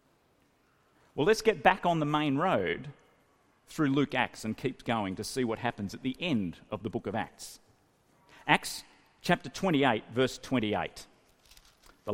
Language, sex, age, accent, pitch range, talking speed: English, male, 40-59, Australian, 95-150 Hz, 155 wpm